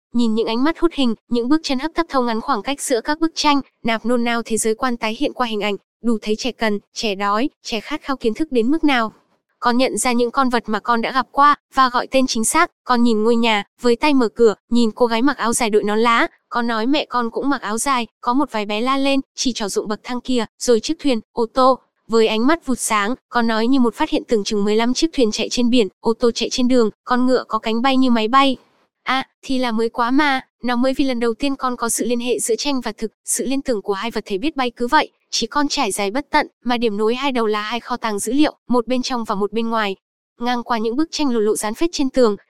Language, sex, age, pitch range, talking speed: Vietnamese, female, 10-29, 225-270 Hz, 285 wpm